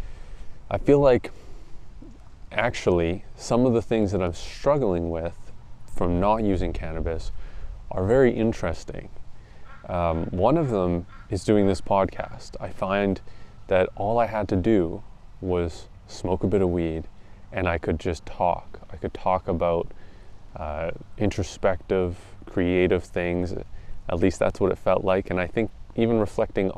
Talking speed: 150 wpm